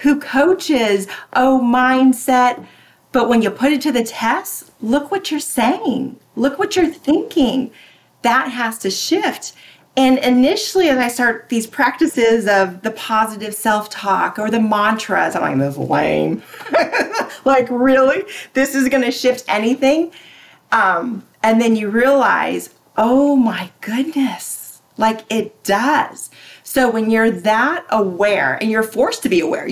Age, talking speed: 40-59, 145 wpm